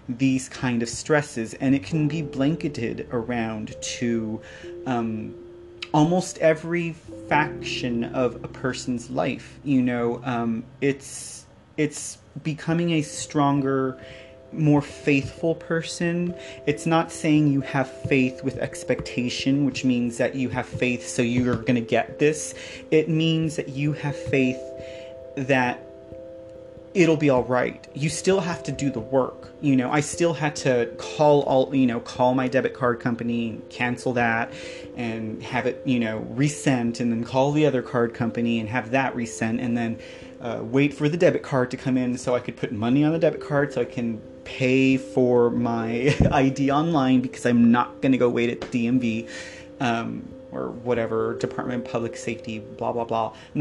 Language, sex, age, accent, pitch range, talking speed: English, male, 30-49, American, 120-145 Hz, 170 wpm